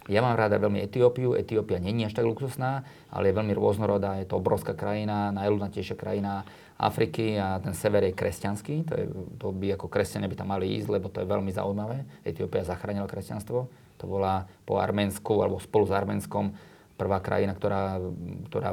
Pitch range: 95-115 Hz